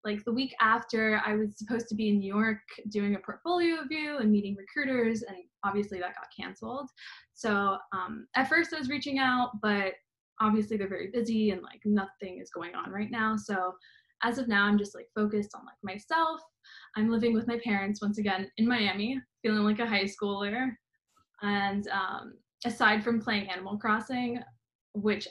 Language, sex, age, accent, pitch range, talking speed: English, female, 10-29, American, 205-240 Hz, 185 wpm